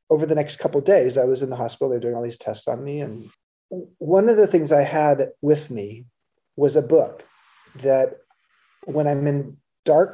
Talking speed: 205 wpm